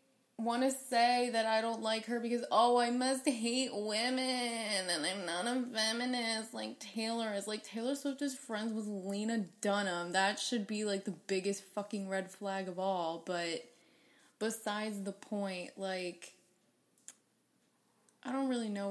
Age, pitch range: 20-39, 195-225 Hz